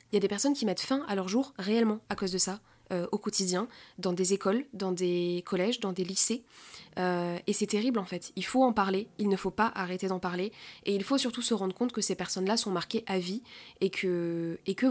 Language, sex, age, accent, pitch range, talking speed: French, female, 20-39, French, 185-215 Hz, 250 wpm